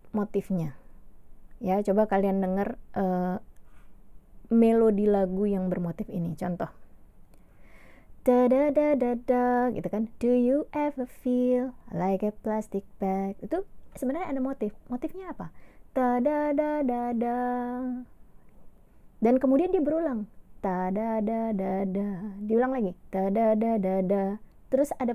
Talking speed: 125 wpm